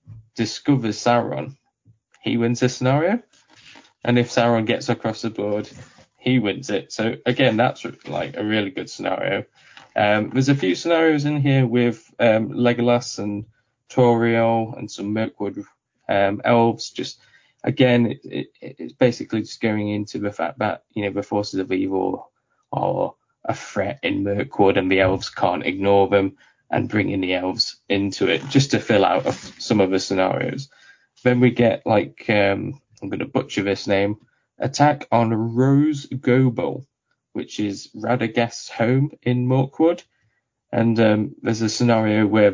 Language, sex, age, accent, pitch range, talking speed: English, male, 10-29, British, 105-125 Hz, 155 wpm